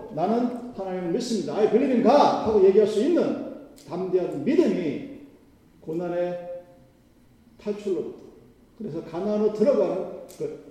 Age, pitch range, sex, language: 40-59, 145-210 Hz, male, Korean